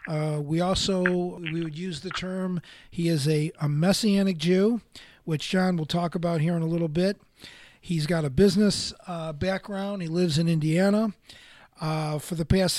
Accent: American